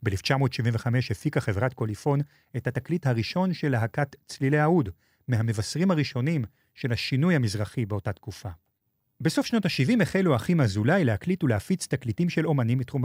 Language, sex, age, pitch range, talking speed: Hebrew, male, 40-59, 110-145 Hz, 140 wpm